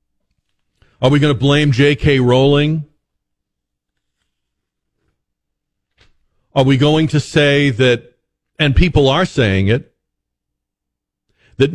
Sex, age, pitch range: male, 50-69, 100-155 Hz